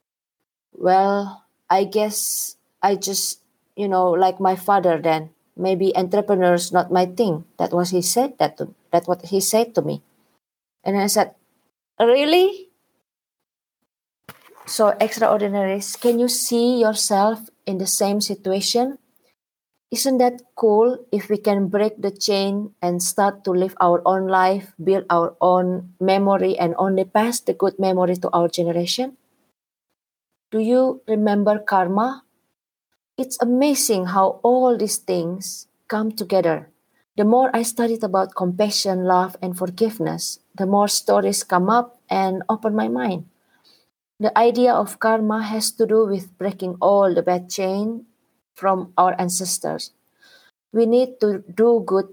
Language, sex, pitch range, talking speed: English, female, 185-225 Hz, 140 wpm